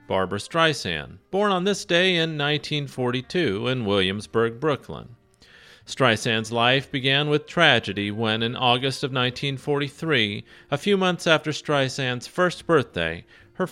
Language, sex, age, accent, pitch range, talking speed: English, male, 40-59, American, 110-155 Hz, 125 wpm